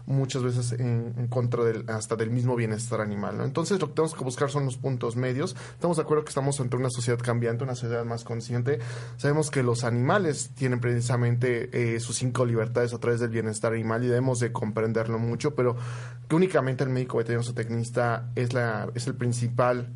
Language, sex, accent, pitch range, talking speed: Spanish, male, Mexican, 120-130 Hz, 200 wpm